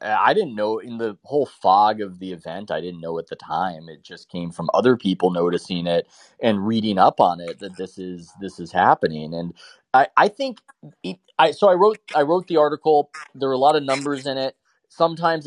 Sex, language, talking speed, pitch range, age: male, English, 220 wpm, 95-135 Hz, 30-49